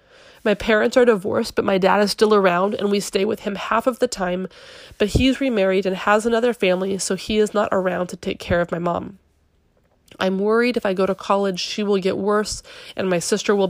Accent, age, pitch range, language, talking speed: American, 30-49, 185-220 Hz, English, 230 wpm